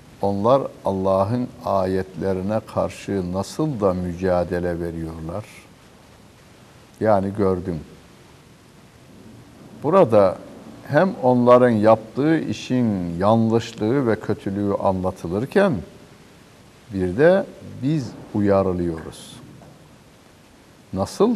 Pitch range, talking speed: 95-125 Hz, 65 wpm